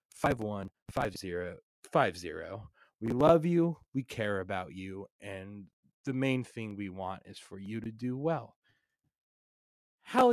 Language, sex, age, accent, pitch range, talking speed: English, male, 30-49, American, 110-150 Hz, 150 wpm